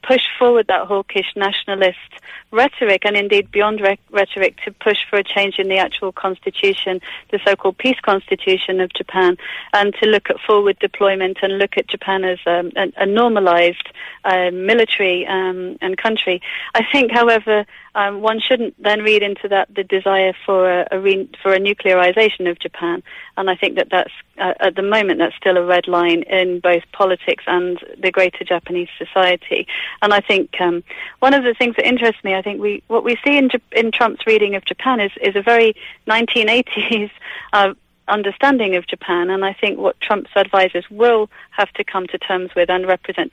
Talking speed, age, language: 185 wpm, 40-59, English